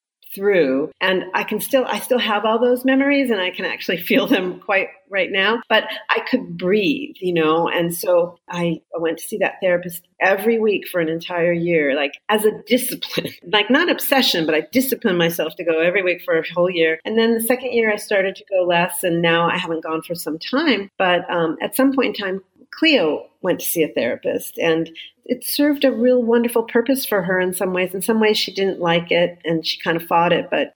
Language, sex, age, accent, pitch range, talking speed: English, female, 40-59, American, 170-230 Hz, 230 wpm